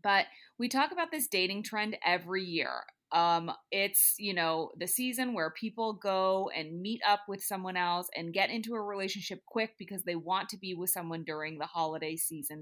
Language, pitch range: English, 175-235 Hz